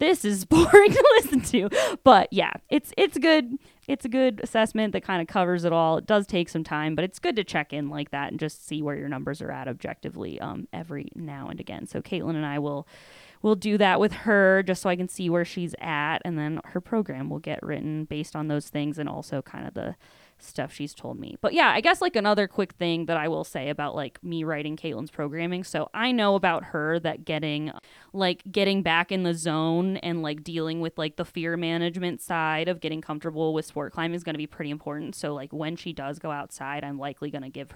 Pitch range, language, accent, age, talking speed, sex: 150-185 Hz, English, American, 20-39, 240 wpm, female